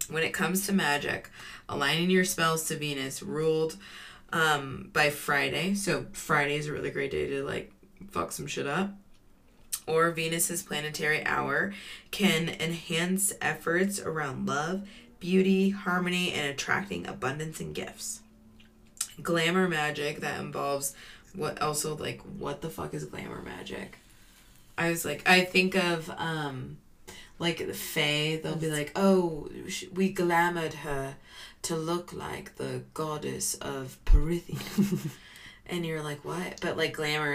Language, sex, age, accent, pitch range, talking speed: English, female, 20-39, American, 145-180 Hz, 140 wpm